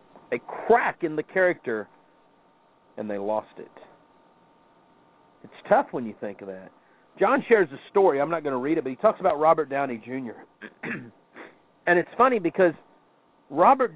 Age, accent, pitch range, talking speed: 50-69, American, 125-170 Hz, 165 wpm